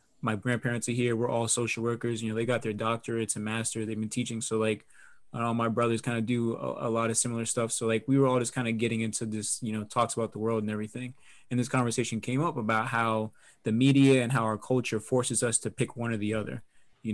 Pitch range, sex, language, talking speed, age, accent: 110-125 Hz, male, English, 260 wpm, 20-39, American